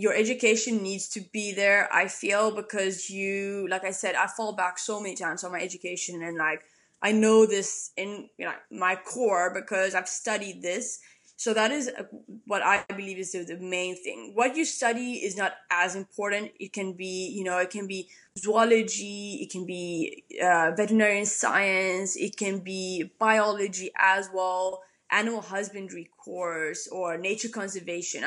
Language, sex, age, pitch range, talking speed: English, female, 20-39, 185-220 Hz, 165 wpm